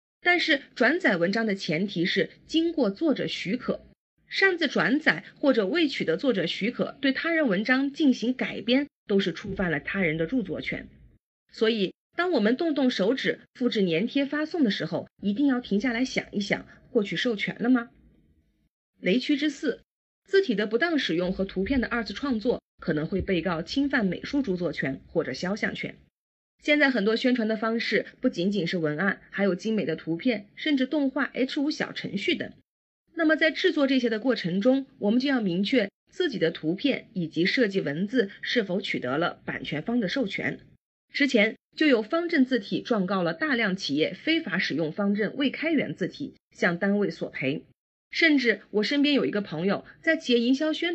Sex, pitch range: female, 195-280 Hz